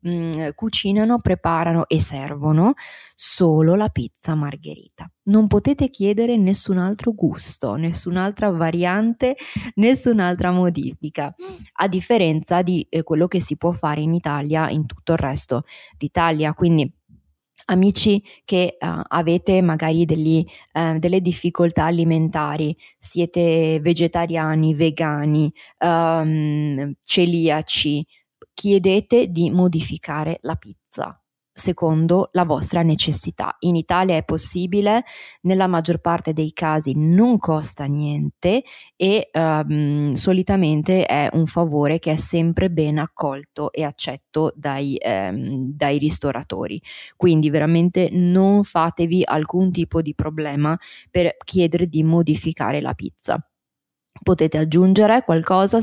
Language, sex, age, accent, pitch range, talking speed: Italian, female, 20-39, native, 155-185 Hz, 110 wpm